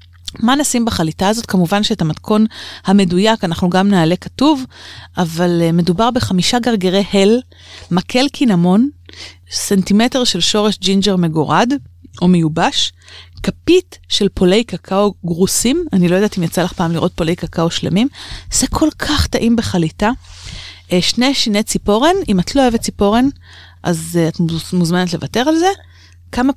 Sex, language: female, Hebrew